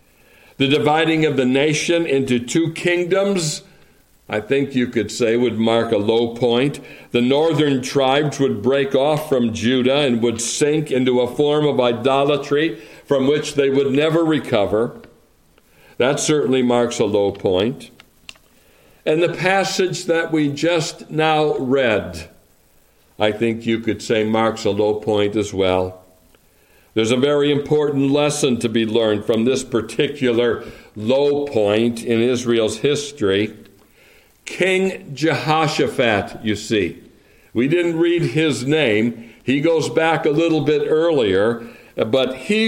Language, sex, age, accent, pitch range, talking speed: English, male, 60-79, American, 120-160 Hz, 140 wpm